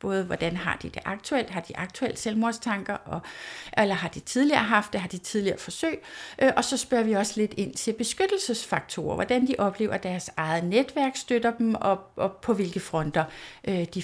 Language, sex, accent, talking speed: Danish, female, native, 180 wpm